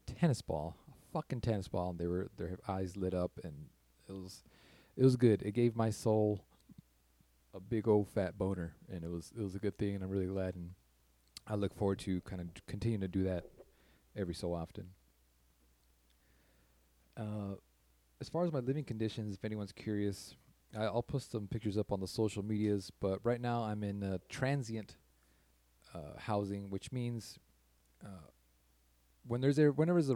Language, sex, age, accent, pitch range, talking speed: English, male, 30-49, American, 80-115 Hz, 185 wpm